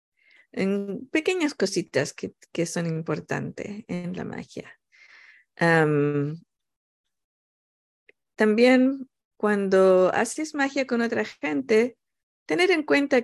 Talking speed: 95 wpm